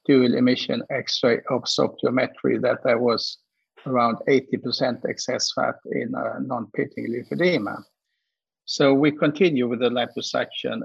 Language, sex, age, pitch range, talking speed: English, male, 50-69, 120-145 Hz, 110 wpm